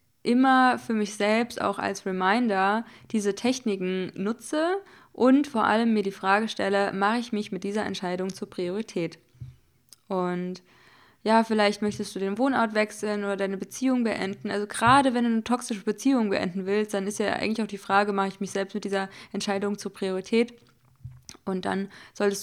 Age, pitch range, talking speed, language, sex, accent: 20-39, 190-220 Hz, 175 wpm, German, female, German